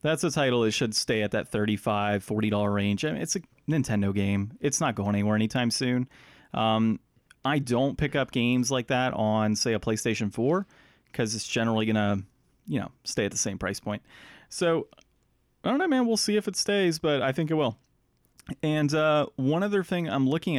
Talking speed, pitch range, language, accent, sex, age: 200 wpm, 110-155 Hz, English, American, male, 30-49